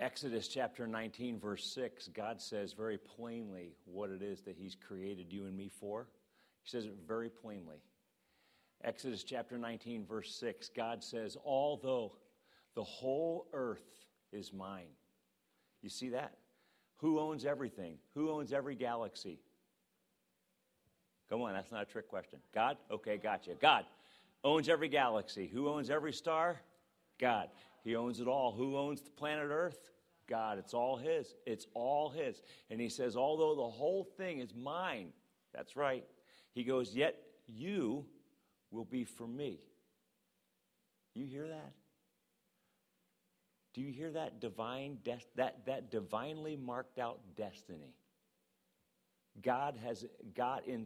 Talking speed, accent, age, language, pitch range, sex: 140 wpm, American, 50-69, English, 110-145 Hz, male